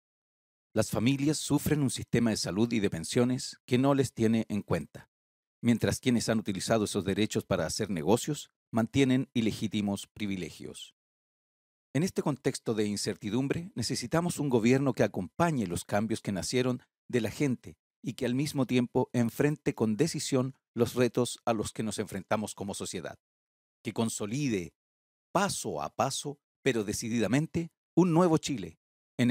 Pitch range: 105-130 Hz